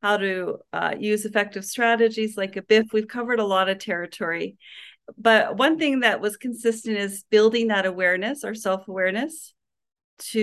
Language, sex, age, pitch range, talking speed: English, female, 40-59, 195-230 Hz, 160 wpm